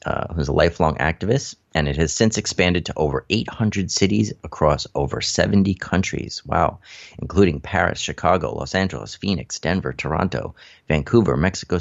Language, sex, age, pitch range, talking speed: English, male, 30-49, 75-95 Hz, 145 wpm